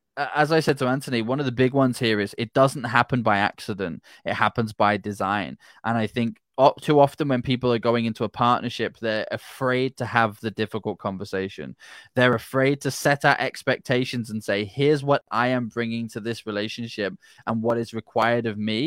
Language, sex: English, male